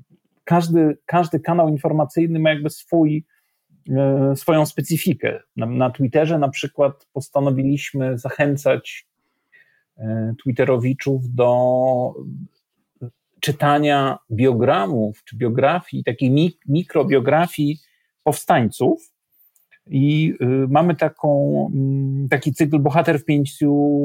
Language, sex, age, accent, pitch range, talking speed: Polish, male, 40-59, native, 125-155 Hz, 80 wpm